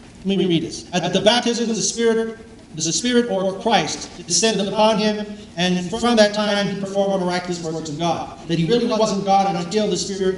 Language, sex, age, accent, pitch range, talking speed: English, male, 40-59, American, 170-210 Hz, 200 wpm